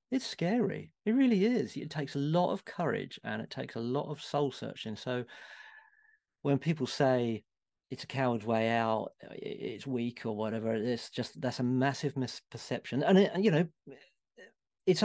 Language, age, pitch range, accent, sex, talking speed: English, 40-59, 125-165 Hz, British, male, 170 wpm